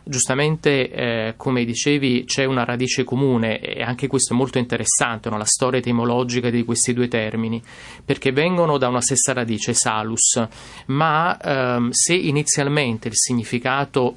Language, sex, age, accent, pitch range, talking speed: Italian, male, 30-49, native, 120-140 Hz, 145 wpm